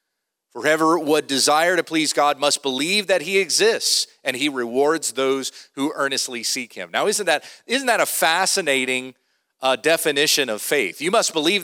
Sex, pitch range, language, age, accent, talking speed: male, 140-185 Hz, English, 40-59, American, 165 wpm